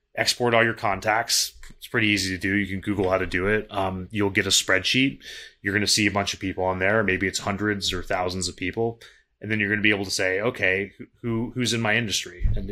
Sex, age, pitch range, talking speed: male, 30-49, 95-110 Hz, 250 wpm